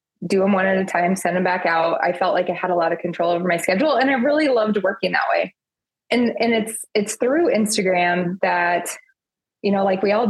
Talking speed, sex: 240 wpm, female